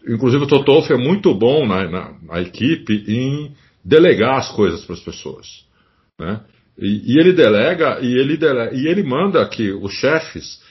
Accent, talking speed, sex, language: Brazilian, 150 wpm, male, Portuguese